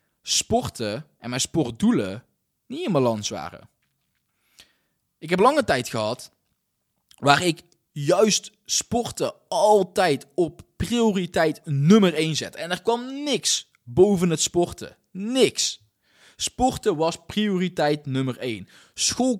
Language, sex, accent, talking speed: Dutch, male, Dutch, 115 wpm